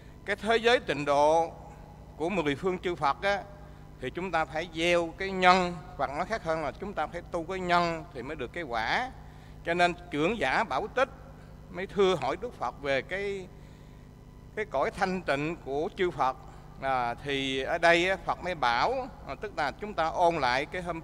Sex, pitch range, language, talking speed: male, 145-190 Hz, English, 195 wpm